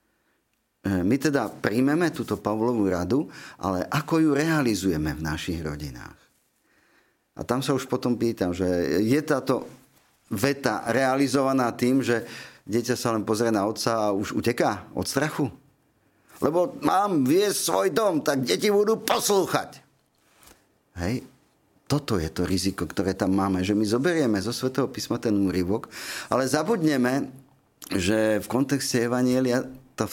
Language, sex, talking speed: Slovak, male, 135 wpm